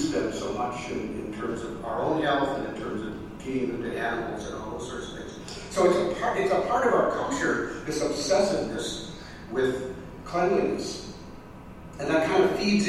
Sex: male